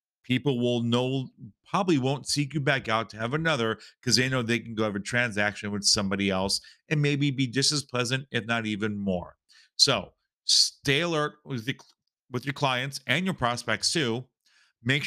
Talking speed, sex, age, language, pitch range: 185 wpm, male, 40-59, English, 115-150 Hz